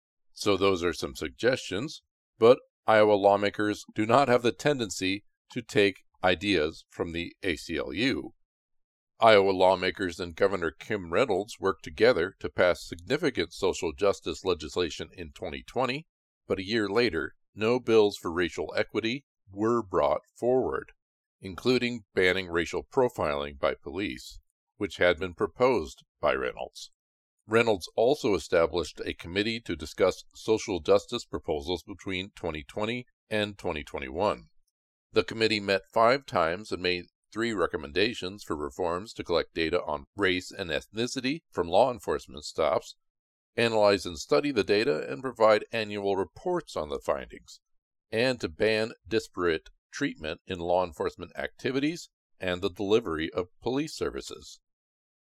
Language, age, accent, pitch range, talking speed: English, 50-69, American, 90-120 Hz, 135 wpm